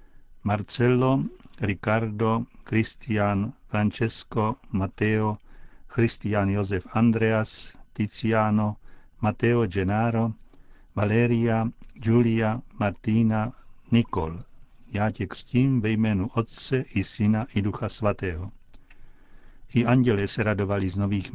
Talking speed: 90 wpm